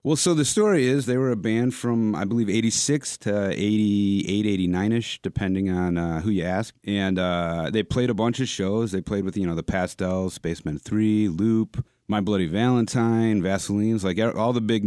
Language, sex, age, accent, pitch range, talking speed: English, male, 30-49, American, 90-110 Hz, 195 wpm